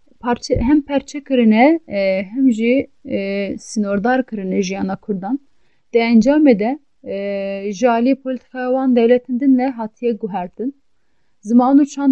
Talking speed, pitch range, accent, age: 95 wpm, 215-260 Hz, native, 30-49